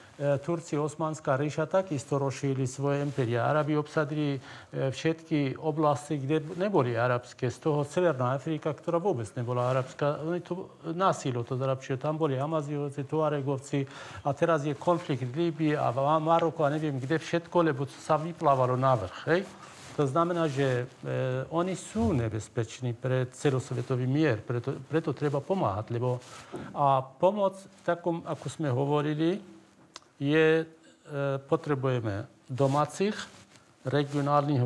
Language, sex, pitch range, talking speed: Slovak, male, 130-160 Hz, 130 wpm